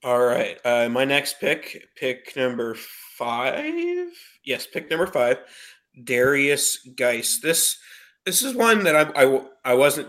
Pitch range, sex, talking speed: 120-140 Hz, male, 145 wpm